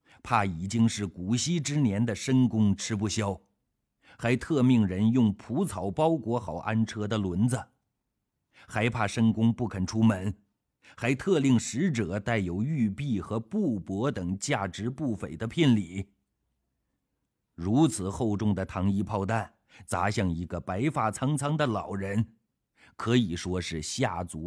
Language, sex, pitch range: Chinese, male, 100-125 Hz